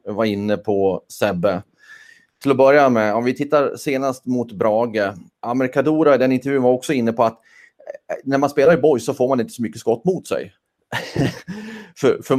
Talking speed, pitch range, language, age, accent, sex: 190 wpm, 110-140 Hz, Swedish, 30-49, native, male